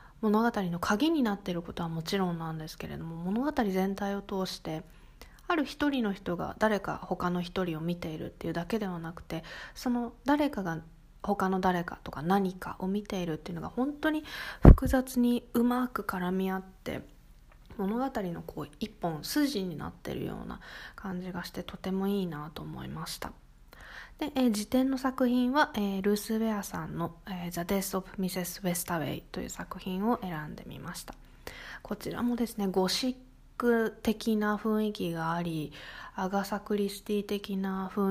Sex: female